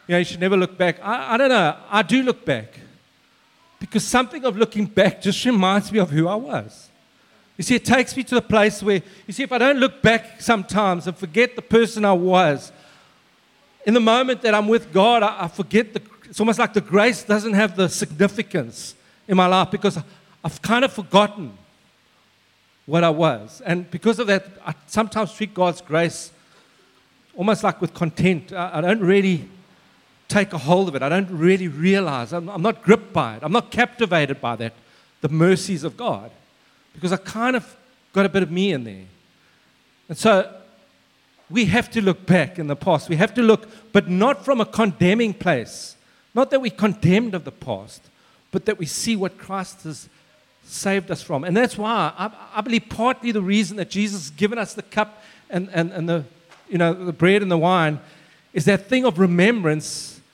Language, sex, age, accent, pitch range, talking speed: English, male, 50-69, South African, 170-220 Hz, 200 wpm